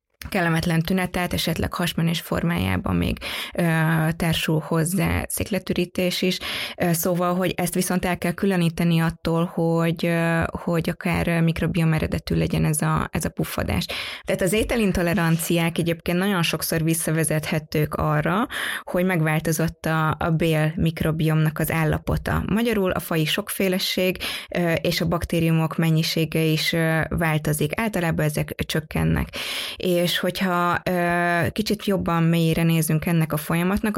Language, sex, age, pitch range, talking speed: Hungarian, female, 20-39, 160-180 Hz, 120 wpm